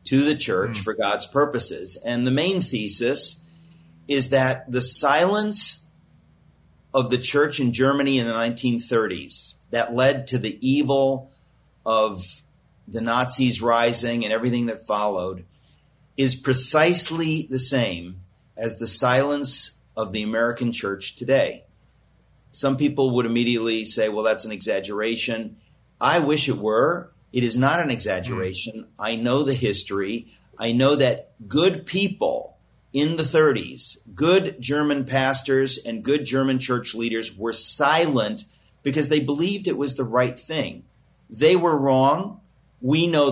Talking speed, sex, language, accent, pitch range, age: 140 wpm, male, English, American, 115-145 Hz, 50-69